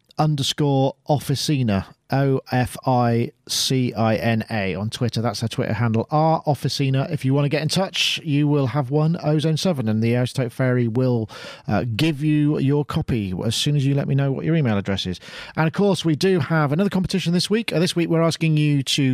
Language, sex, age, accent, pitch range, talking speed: English, male, 40-59, British, 125-160 Hz, 215 wpm